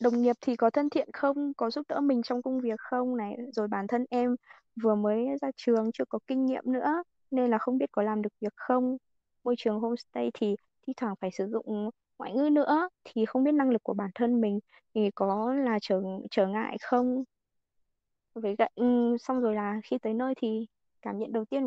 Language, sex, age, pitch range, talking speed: Vietnamese, female, 20-39, 215-255 Hz, 220 wpm